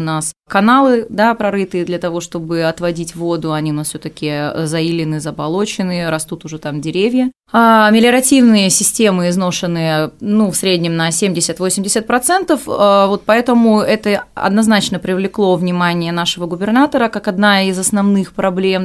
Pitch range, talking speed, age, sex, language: 165-210 Hz, 135 wpm, 20-39, female, Russian